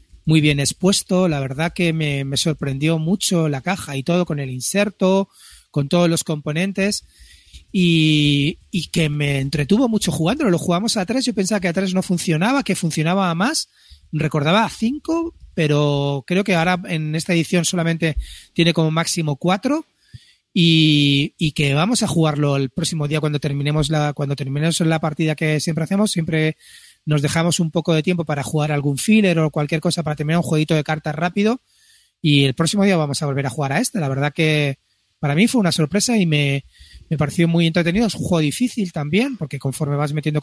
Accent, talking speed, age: Spanish, 195 wpm, 30-49